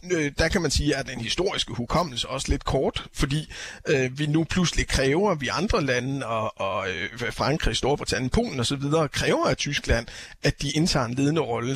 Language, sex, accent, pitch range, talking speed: Danish, male, native, 120-150 Hz, 180 wpm